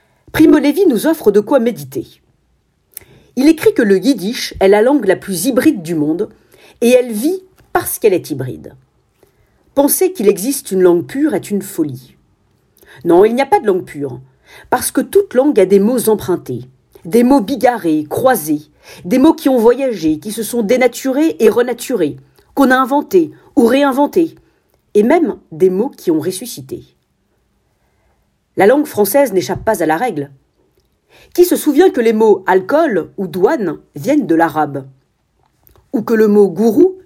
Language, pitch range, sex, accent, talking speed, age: French, 180-290 Hz, female, French, 170 wpm, 40-59